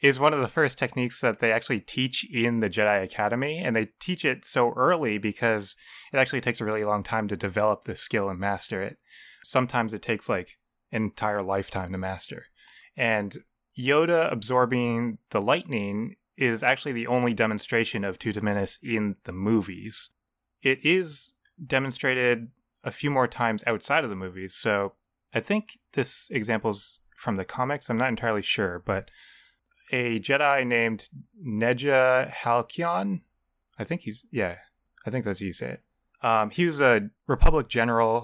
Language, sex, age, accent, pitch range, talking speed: English, male, 20-39, American, 105-130 Hz, 165 wpm